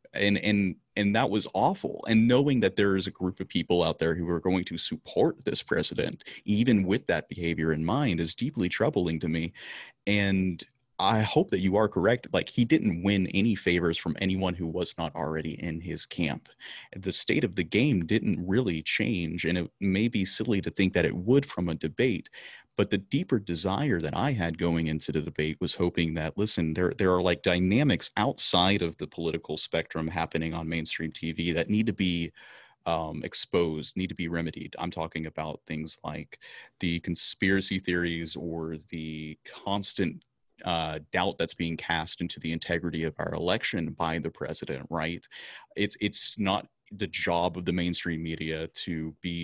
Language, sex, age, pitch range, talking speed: English, male, 30-49, 80-95 Hz, 185 wpm